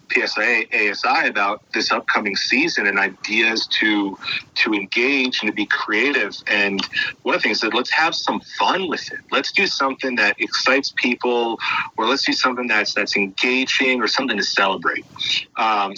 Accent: American